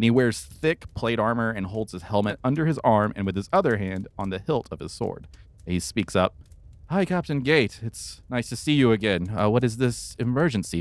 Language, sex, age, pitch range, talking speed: English, male, 30-49, 85-115 Hz, 230 wpm